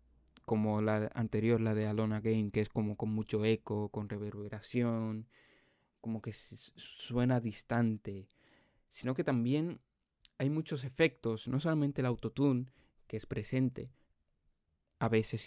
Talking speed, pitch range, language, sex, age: 130 wpm, 110-130 Hz, Spanish, male, 20-39